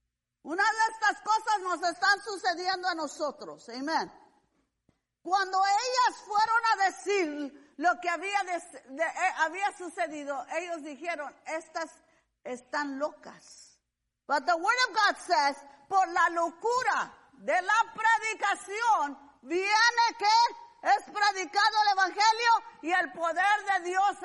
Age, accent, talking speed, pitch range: 50-69, American, 125 wpm, 315-425 Hz